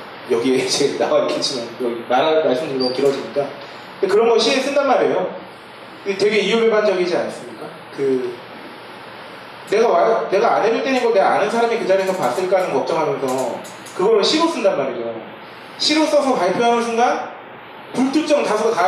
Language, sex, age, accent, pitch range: Korean, male, 30-49, native, 155-260 Hz